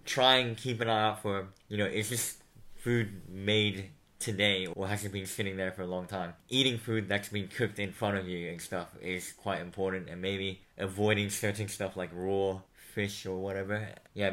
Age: 10-29